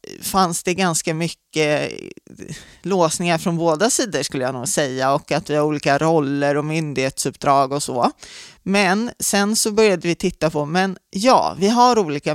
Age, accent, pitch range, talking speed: 20-39, native, 150-205 Hz, 165 wpm